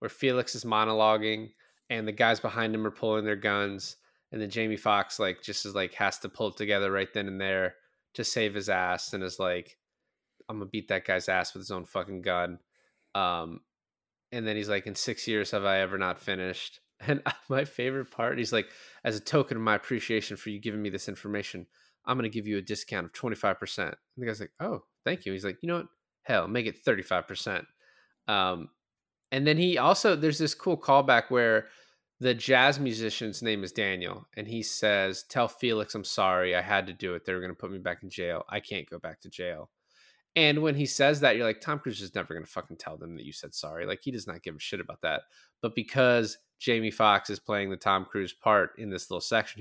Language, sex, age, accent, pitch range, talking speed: English, male, 20-39, American, 100-125 Hz, 230 wpm